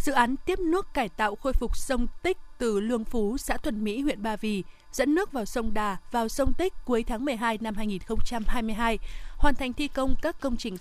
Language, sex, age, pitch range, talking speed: Vietnamese, female, 20-39, 220-265 Hz, 215 wpm